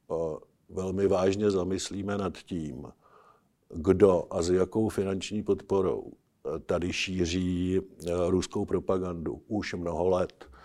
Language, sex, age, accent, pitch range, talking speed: Czech, male, 60-79, native, 95-110 Hz, 100 wpm